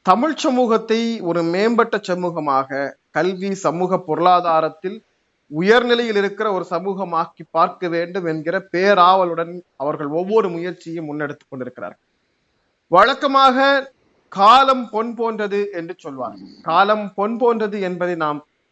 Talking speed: 105 wpm